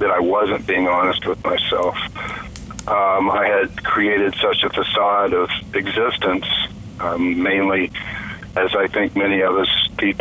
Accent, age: American, 50-69